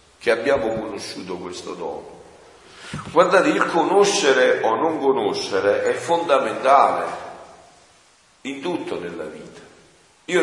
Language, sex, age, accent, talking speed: Italian, male, 50-69, native, 105 wpm